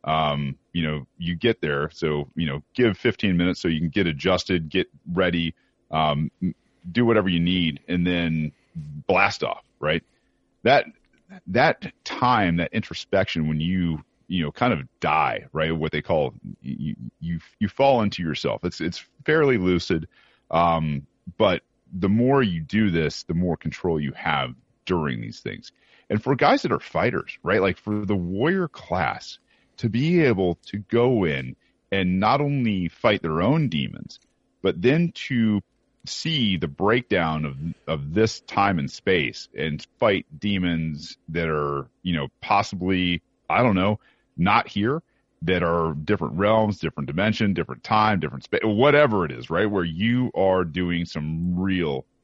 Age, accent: 40-59, American